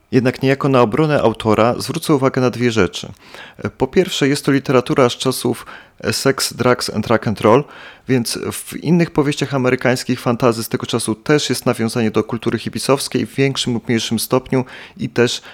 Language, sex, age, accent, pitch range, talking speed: Polish, male, 30-49, native, 115-145 Hz, 175 wpm